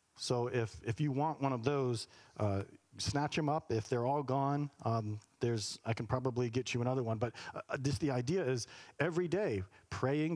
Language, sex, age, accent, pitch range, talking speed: English, male, 40-59, American, 110-140 Hz, 195 wpm